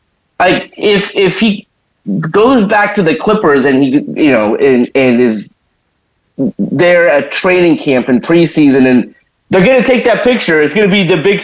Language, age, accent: English, 30-49, American